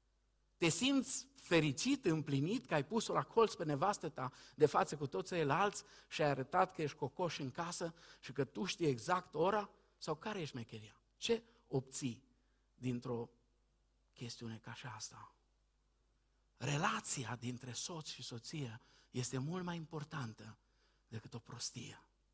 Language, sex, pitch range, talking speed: Romanian, male, 120-160 Hz, 145 wpm